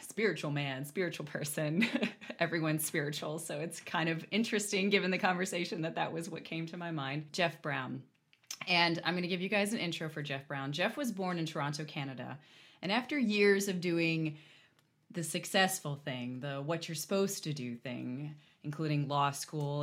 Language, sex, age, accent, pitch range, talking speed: English, female, 30-49, American, 150-185 Hz, 180 wpm